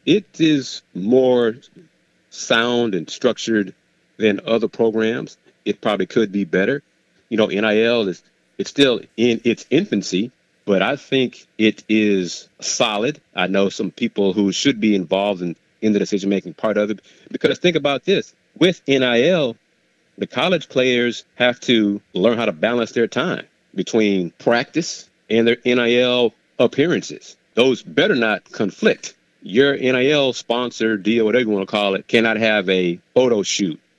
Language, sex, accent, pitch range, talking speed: English, male, American, 105-125 Hz, 150 wpm